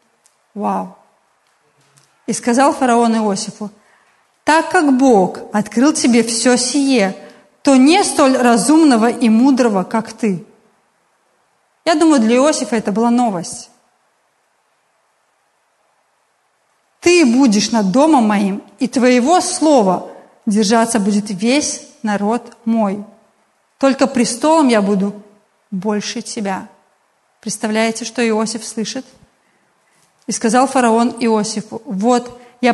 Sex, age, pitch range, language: female, 30-49, 210-250 Hz, Russian